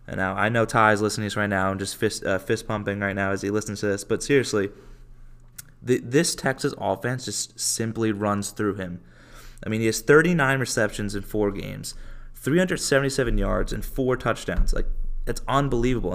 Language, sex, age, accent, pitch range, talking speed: English, male, 20-39, American, 105-125 Hz, 185 wpm